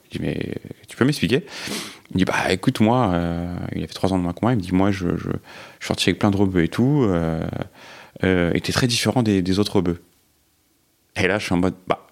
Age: 30-49